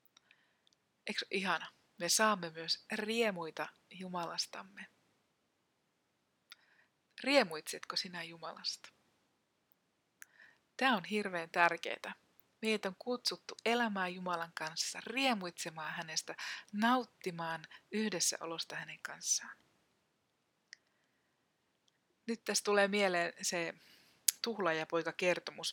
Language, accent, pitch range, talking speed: Finnish, native, 165-205 Hz, 75 wpm